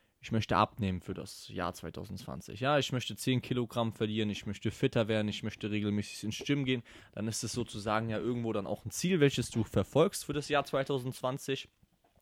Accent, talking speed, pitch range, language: German, 195 wpm, 110-145 Hz, German